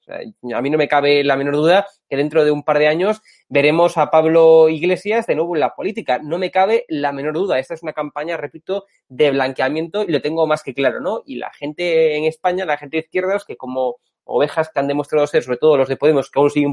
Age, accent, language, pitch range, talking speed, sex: 20-39, Spanish, Spanish, 145-185 Hz, 250 wpm, male